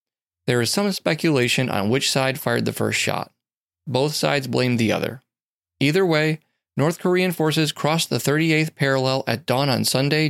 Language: English